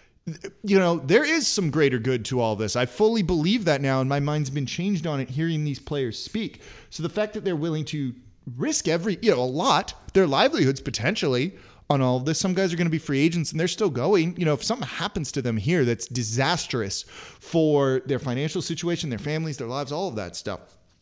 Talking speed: 225 wpm